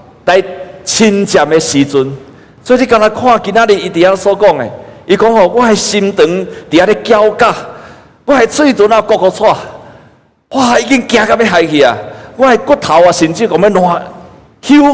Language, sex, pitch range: Chinese, male, 145-215 Hz